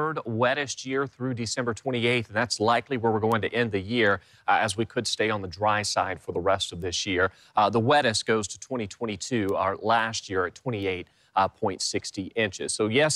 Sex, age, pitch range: male, 30-49, 105-130 Hz